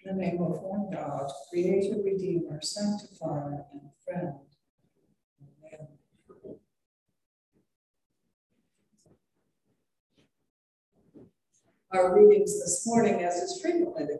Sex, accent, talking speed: female, American, 85 wpm